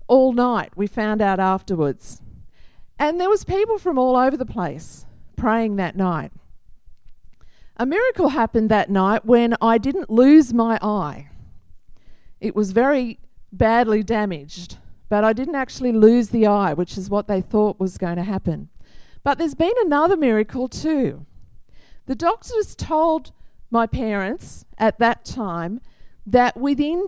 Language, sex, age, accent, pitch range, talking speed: English, female, 50-69, Australian, 180-250 Hz, 145 wpm